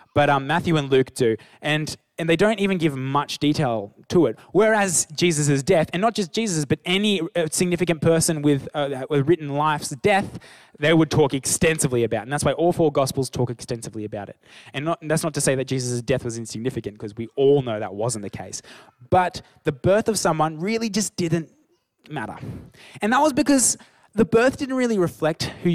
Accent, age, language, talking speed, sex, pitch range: Australian, 20-39, English, 205 wpm, male, 130-175 Hz